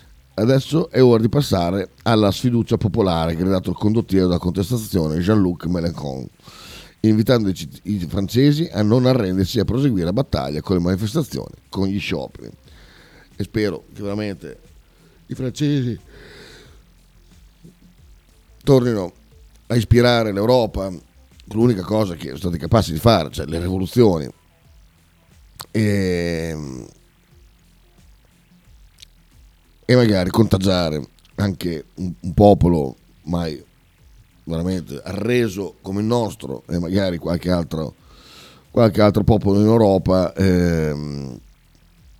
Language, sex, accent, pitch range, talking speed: Italian, male, native, 80-105 Hz, 110 wpm